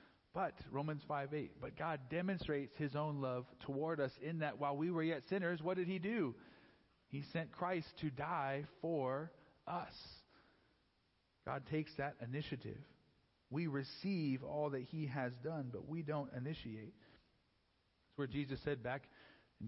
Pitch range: 130-160 Hz